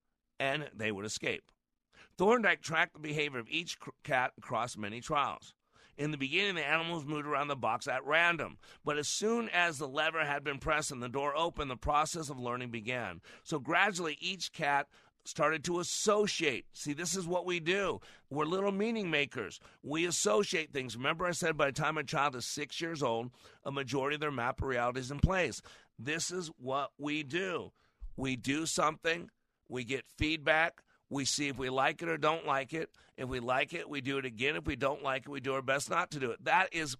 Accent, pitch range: American, 135-165 Hz